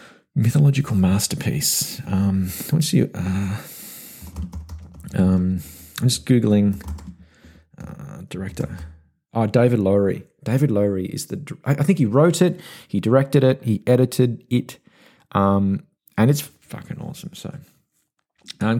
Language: English